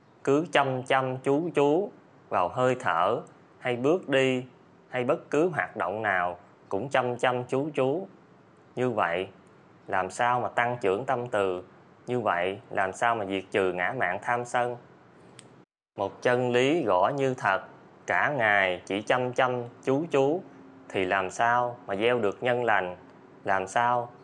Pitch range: 100-130 Hz